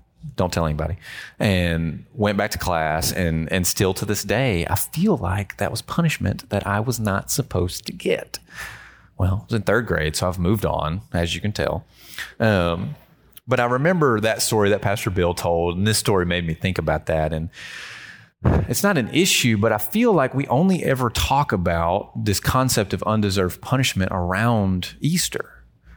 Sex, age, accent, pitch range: male, 30-49, American, 95-125 Hz